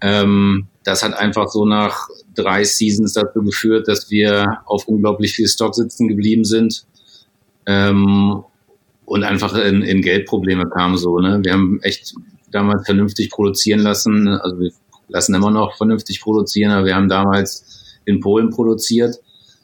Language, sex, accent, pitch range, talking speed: German, male, German, 95-105 Hz, 145 wpm